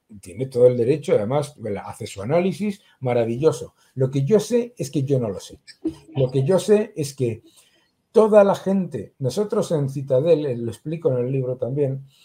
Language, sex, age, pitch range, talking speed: Spanish, male, 60-79, 120-165 Hz, 180 wpm